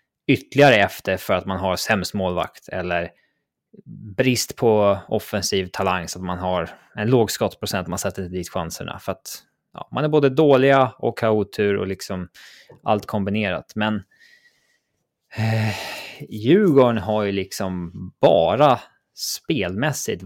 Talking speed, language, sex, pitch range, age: 140 wpm, English, male, 95-120 Hz, 20-39